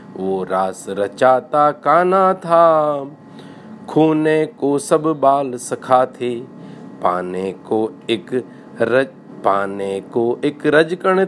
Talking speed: 100 wpm